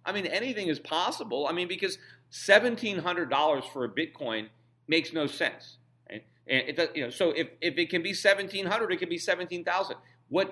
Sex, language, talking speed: male, English, 185 wpm